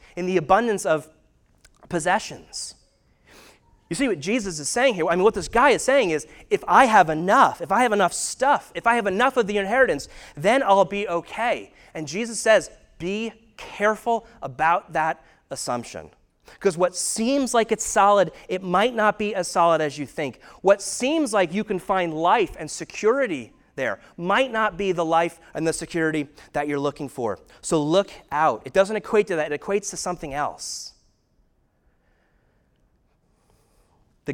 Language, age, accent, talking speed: English, 30-49, American, 175 wpm